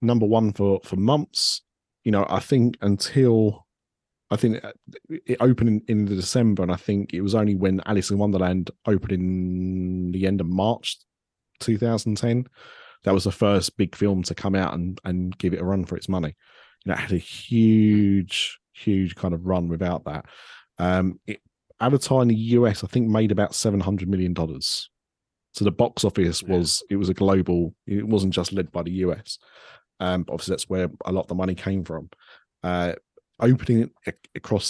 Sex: male